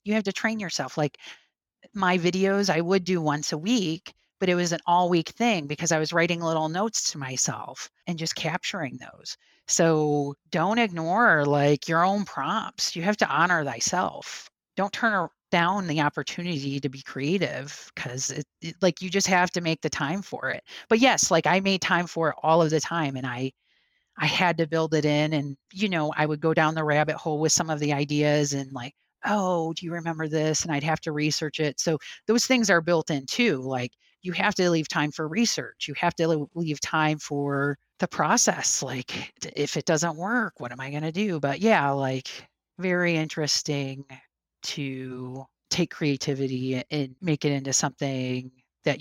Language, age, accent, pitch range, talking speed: English, 30-49, American, 145-175 Hz, 200 wpm